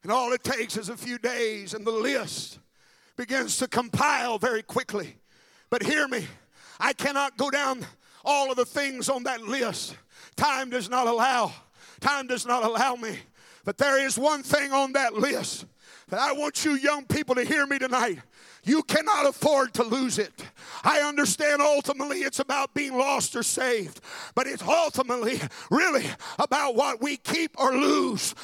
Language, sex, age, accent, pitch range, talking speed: English, male, 50-69, American, 255-295 Hz, 175 wpm